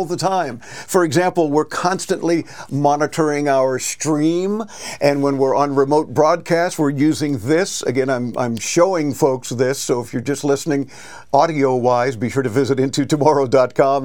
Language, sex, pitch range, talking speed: English, male, 135-165 Hz, 150 wpm